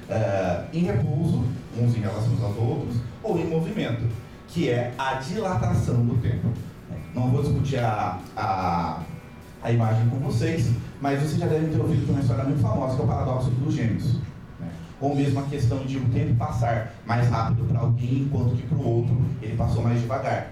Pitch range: 115-140 Hz